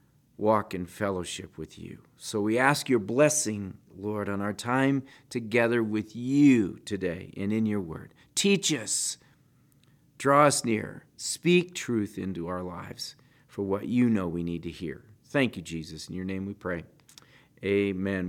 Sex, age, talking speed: male, 40-59, 160 wpm